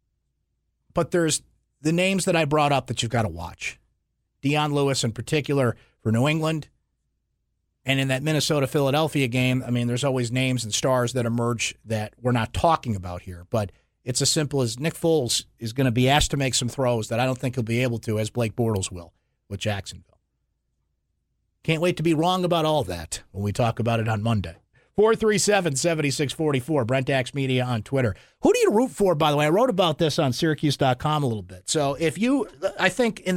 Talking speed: 205 wpm